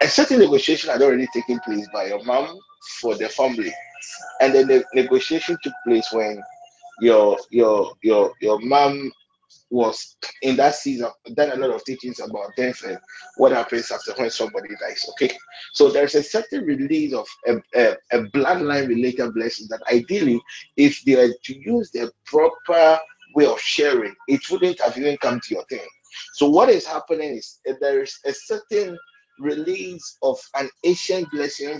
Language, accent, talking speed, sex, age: English, Nigerian, 175 wpm, male, 30-49